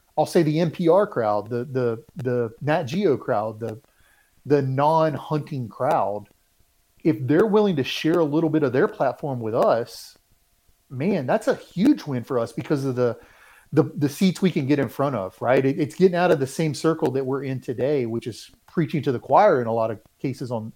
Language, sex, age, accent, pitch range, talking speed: English, male, 40-59, American, 125-160 Hz, 200 wpm